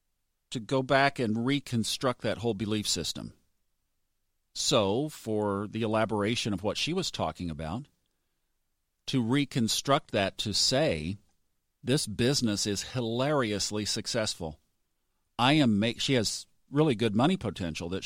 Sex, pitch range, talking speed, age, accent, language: male, 105-135 Hz, 130 wpm, 50-69, American, English